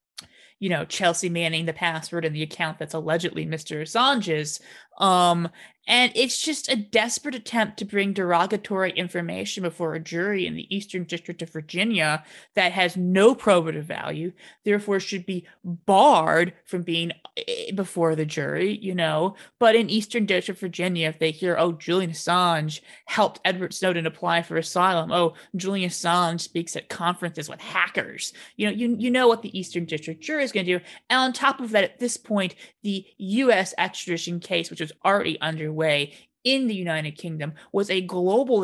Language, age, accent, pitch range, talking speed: English, 30-49, American, 165-210 Hz, 175 wpm